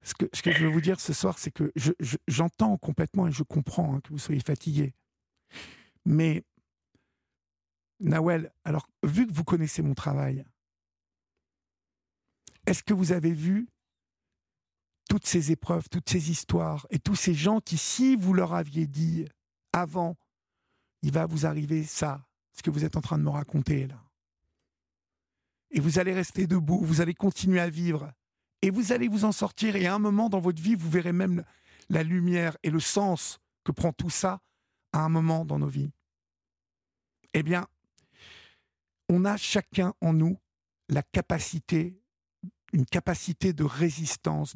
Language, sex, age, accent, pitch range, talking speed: French, male, 50-69, French, 130-180 Hz, 165 wpm